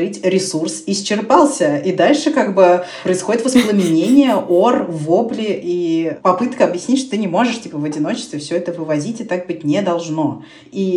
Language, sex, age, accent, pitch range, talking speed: Russian, female, 20-39, native, 160-205 Hz, 160 wpm